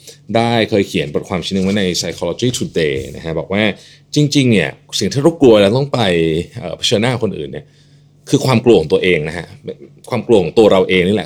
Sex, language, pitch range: male, Thai, 95-140 Hz